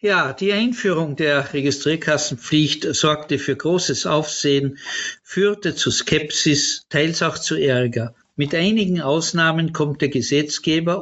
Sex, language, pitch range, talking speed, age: male, German, 135-170 Hz, 120 wpm, 50-69